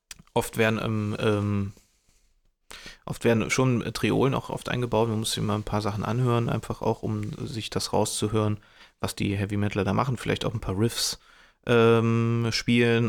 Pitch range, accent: 100-110 Hz, German